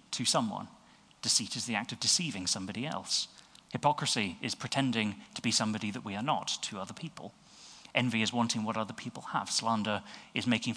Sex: male